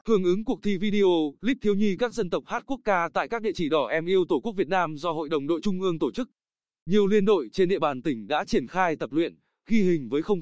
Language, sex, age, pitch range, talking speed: Vietnamese, male, 20-39, 165-215 Hz, 280 wpm